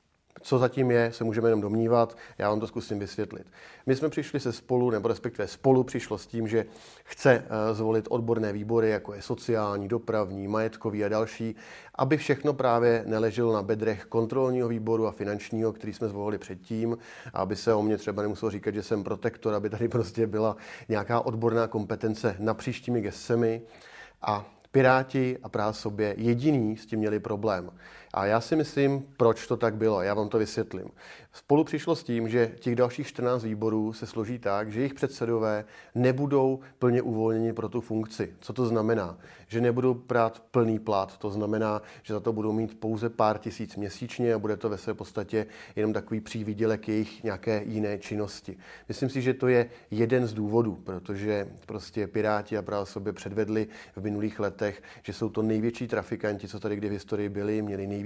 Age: 40-59